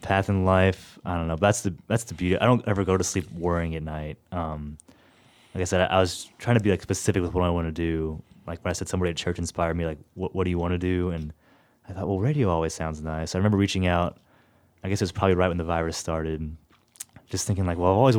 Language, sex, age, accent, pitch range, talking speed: English, male, 20-39, American, 80-95 Hz, 275 wpm